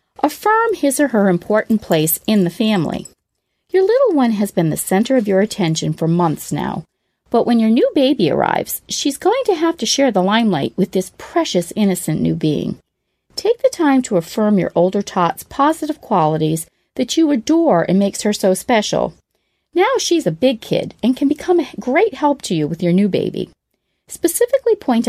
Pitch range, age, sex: 175-275 Hz, 40-59, female